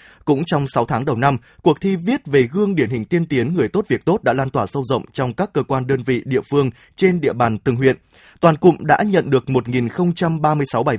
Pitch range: 130-170 Hz